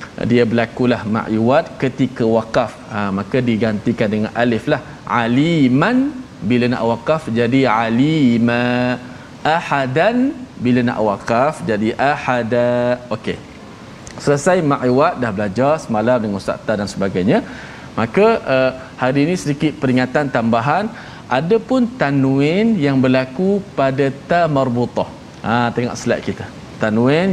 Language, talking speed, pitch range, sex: Malayalam, 115 wpm, 115-140 Hz, male